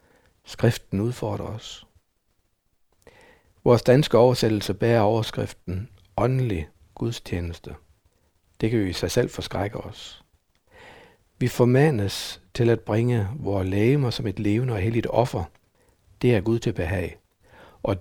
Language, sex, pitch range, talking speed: Danish, male, 95-125 Hz, 125 wpm